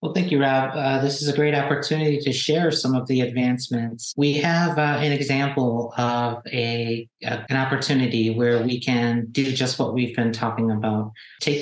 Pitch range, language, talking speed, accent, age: 120-140 Hz, English, 190 wpm, American, 40-59